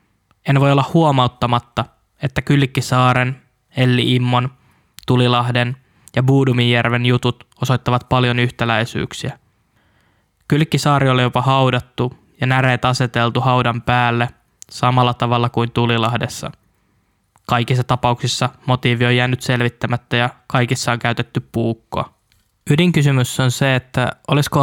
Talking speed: 105 wpm